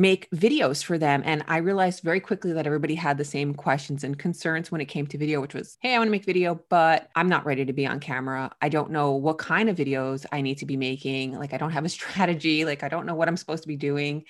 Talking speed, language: 275 wpm, English